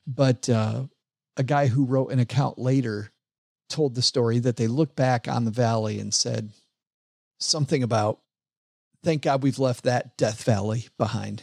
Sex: male